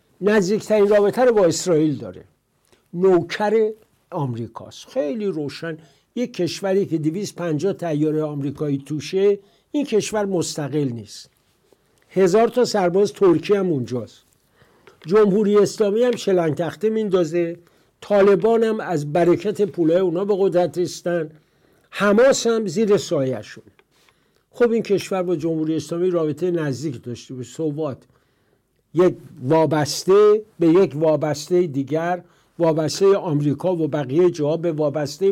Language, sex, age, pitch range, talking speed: English, male, 60-79, 145-195 Hz, 115 wpm